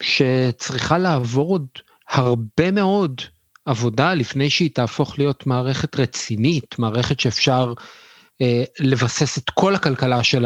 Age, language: 50-69, Hebrew